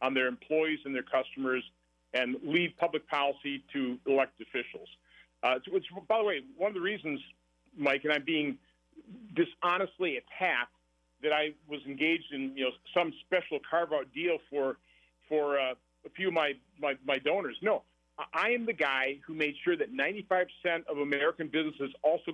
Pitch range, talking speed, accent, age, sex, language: 135-185 Hz, 170 wpm, American, 50-69, male, English